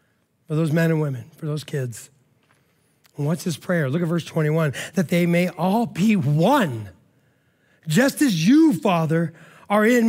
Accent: American